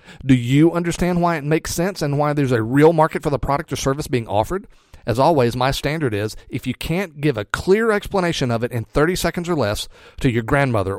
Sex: male